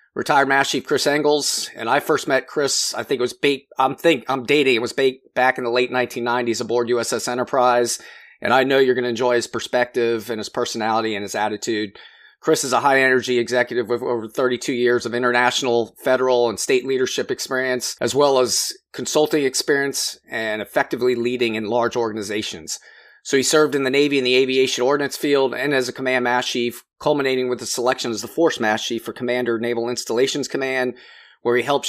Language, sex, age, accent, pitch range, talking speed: English, male, 30-49, American, 120-140 Hz, 200 wpm